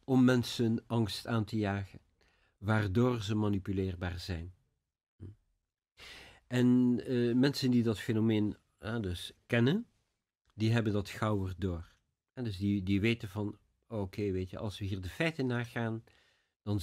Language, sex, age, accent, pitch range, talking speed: Dutch, male, 50-69, Dutch, 95-115 Hz, 130 wpm